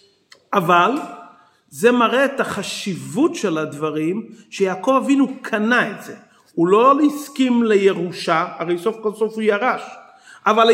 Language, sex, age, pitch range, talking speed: Hebrew, male, 40-59, 210-260 Hz, 125 wpm